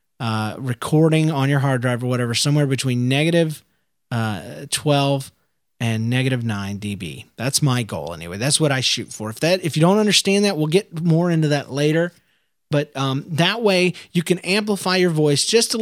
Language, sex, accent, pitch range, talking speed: English, male, American, 130-165 Hz, 190 wpm